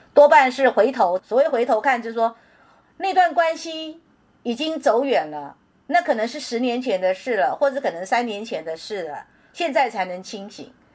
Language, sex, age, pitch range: Chinese, female, 50-69, 205-285 Hz